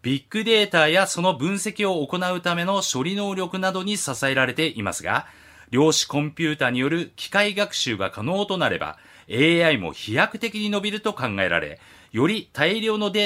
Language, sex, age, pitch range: Japanese, male, 40-59, 135-195 Hz